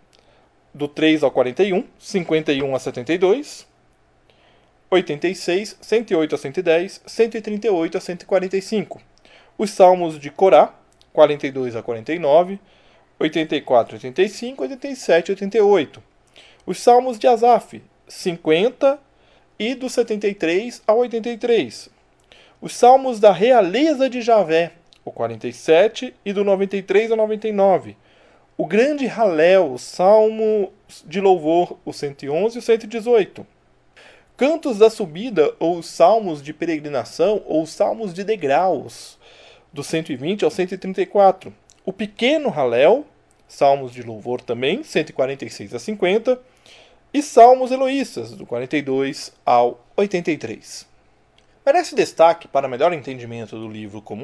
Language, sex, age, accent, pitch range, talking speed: Portuguese, male, 20-39, Brazilian, 150-225 Hz, 110 wpm